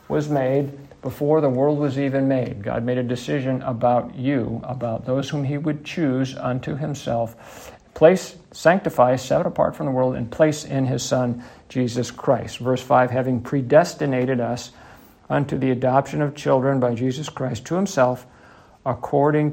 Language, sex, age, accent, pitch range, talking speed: English, male, 60-79, American, 120-145 Hz, 160 wpm